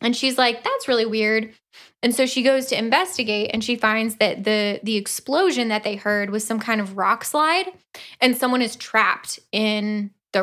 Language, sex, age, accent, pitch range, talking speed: English, female, 10-29, American, 215-275 Hz, 195 wpm